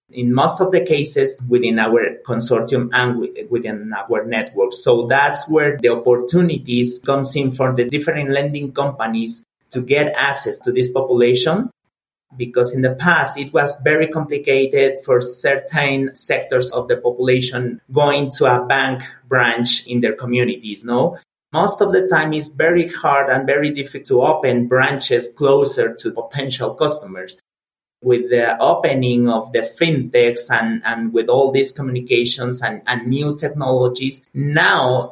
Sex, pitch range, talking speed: male, 125-150 Hz, 150 wpm